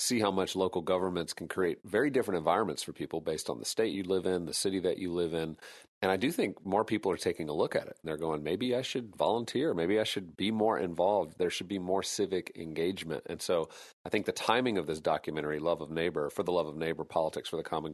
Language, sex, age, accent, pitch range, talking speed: English, male, 40-59, American, 80-95 Hz, 260 wpm